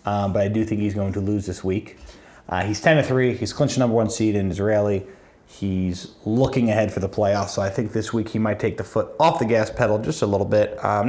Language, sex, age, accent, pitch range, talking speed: English, male, 30-49, American, 100-115 Hz, 265 wpm